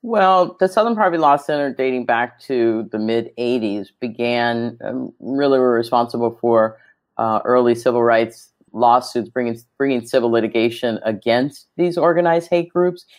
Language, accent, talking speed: English, American, 140 wpm